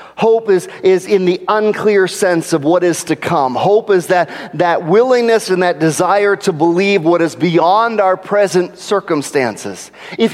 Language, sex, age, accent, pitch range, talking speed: English, male, 40-59, American, 185-250 Hz, 170 wpm